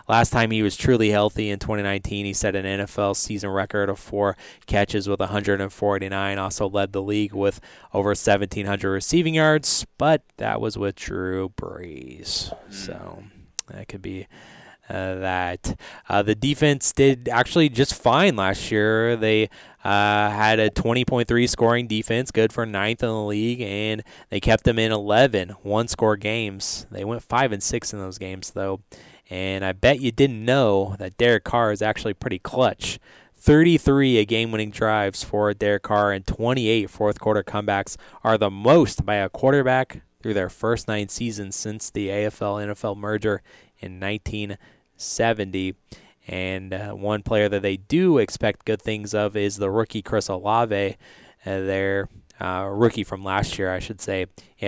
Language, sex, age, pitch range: English, male, 20-39, 95-110 Hz